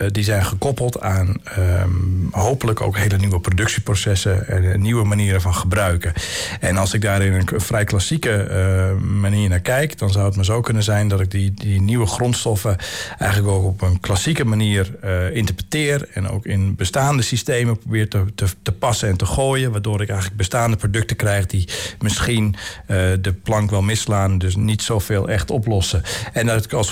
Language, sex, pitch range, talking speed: Dutch, male, 100-130 Hz, 185 wpm